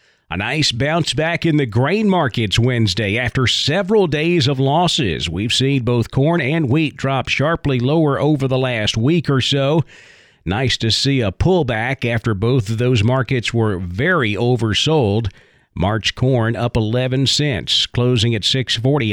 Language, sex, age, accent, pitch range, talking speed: English, male, 40-59, American, 115-150 Hz, 155 wpm